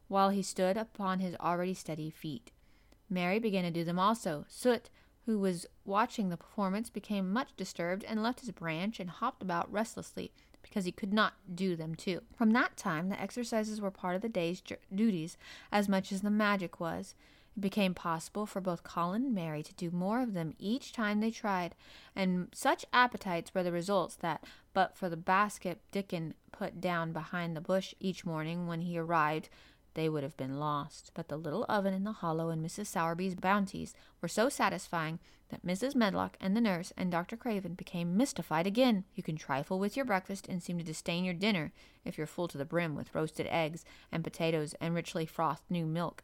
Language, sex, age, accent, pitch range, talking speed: English, female, 30-49, American, 170-210 Hz, 200 wpm